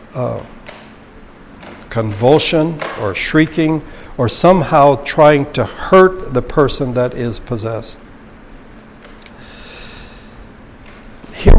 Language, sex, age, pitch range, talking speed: English, male, 60-79, 125-155 Hz, 80 wpm